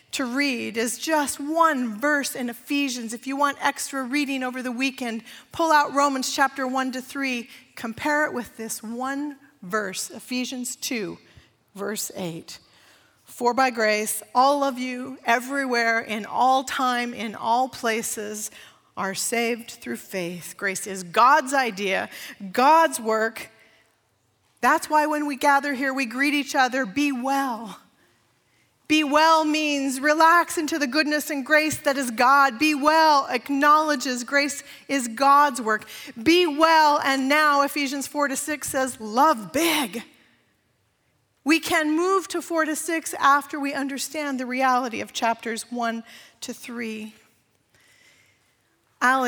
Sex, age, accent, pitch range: female, 40-59, American, 235-290 Hz